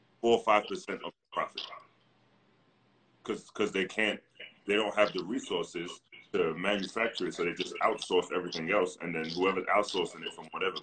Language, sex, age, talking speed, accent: English, male, 30-49, 165 wpm, American